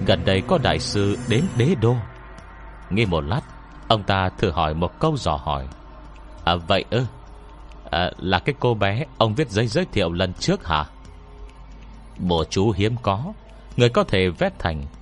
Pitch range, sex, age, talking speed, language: 85-115 Hz, male, 30-49, 180 wpm, Vietnamese